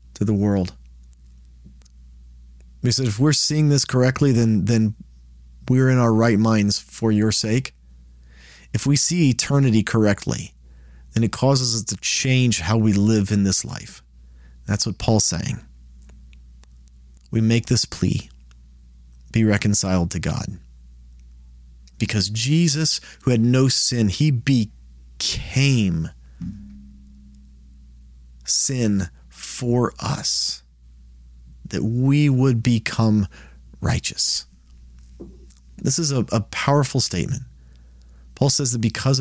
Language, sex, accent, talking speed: English, male, American, 115 wpm